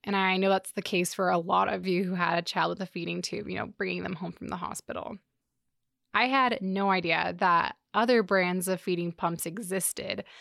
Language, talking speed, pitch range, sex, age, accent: English, 220 wpm, 180-215 Hz, female, 20-39, American